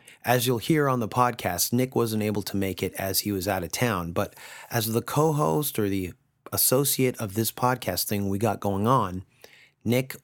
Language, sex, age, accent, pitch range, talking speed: English, male, 30-49, American, 100-135 Hz, 200 wpm